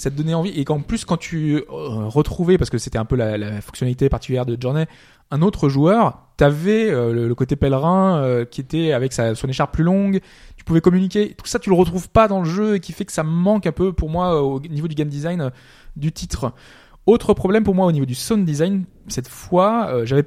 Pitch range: 130-185 Hz